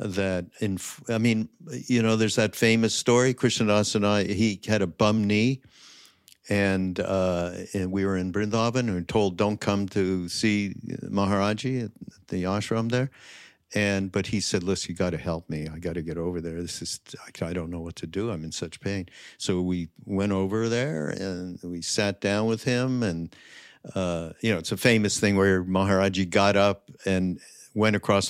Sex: male